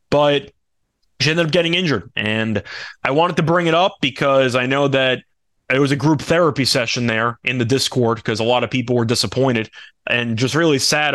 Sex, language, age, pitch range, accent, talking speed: male, English, 20-39, 130-170 Hz, American, 205 wpm